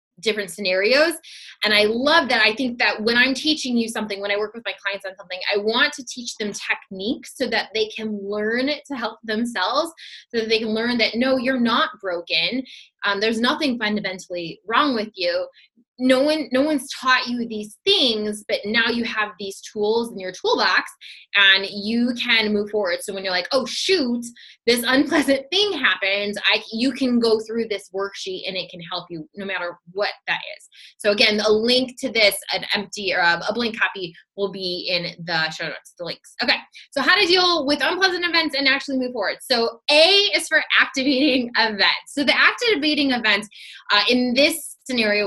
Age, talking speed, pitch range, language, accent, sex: 20-39, 195 wpm, 195-255 Hz, English, American, female